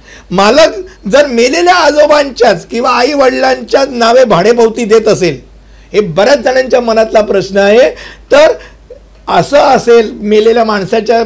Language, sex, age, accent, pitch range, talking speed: Hindi, male, 60-79, native, 205-265 Hz, 85 wpm